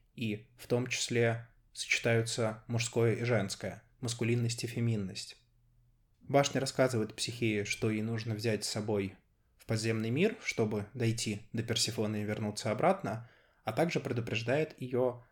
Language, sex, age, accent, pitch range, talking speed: Russian, male, 20-39, native, 110-125 Hz, 135 wpm